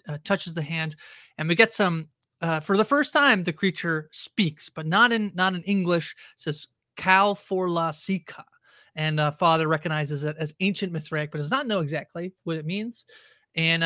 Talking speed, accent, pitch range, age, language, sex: 190 wpm, American, 155-205 Hz, 30-49, English, male